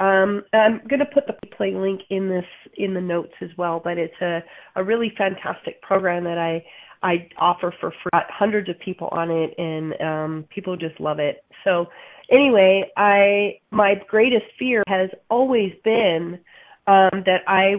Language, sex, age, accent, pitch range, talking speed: English, female, 30-49, American, 180-215 Hz, 175 wpm